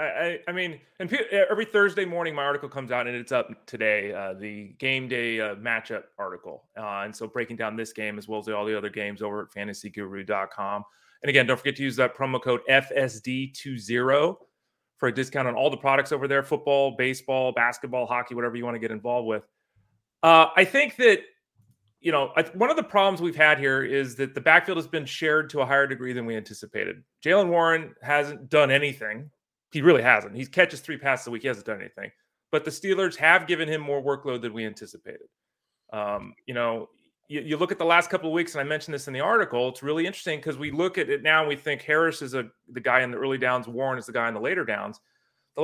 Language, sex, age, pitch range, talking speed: English, male, 30-49, 125-165 Hz, 230 wpm